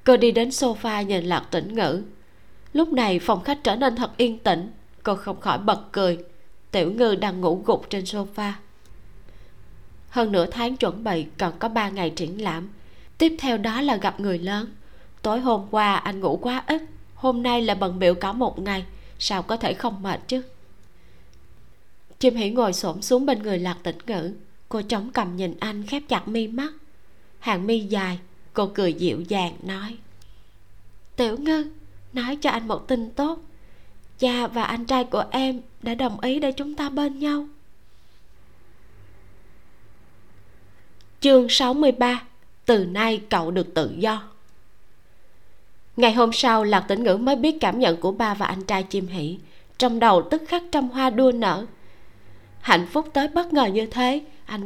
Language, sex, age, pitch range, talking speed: Vietnamese, female, 20-39, 170-250 Hz, 175 wpm